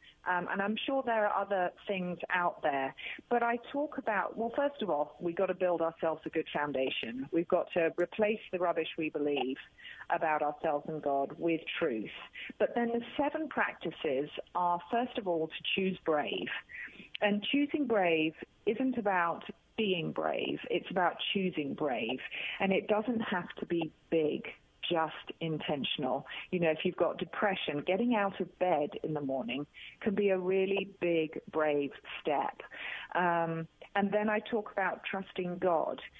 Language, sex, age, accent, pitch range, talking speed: English, female, 40-59, British, 160-220 Hz, 165 wpm